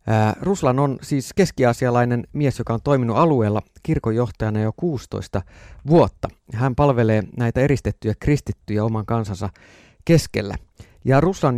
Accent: native